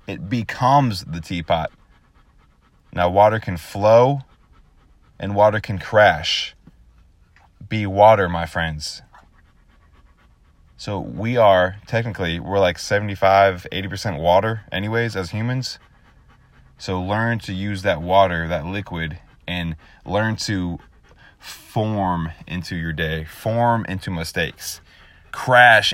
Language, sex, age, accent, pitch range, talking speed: English, male, 20-39, American, 85-105 Hz, 110 wpm